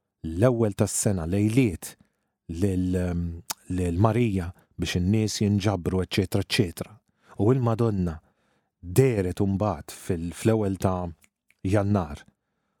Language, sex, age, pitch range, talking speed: English, male, 40-59, 90-120 Hz, 80 wpm